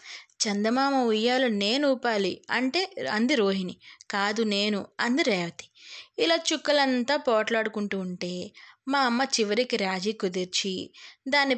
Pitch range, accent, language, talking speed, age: 205-255 Hz, native, Telugu, 105 wpm, 20-39